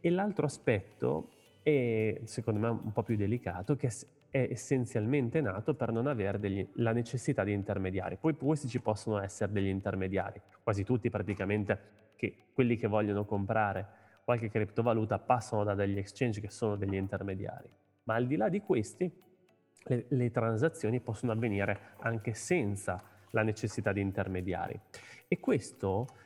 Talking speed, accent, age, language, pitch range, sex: 145 wpm, native, 30-49, Italian, 100-125 Hz, male